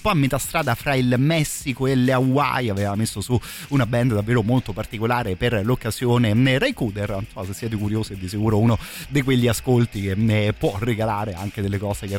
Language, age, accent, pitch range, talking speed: Italian, 30-49, native, 110-130 Hz, 190 wpm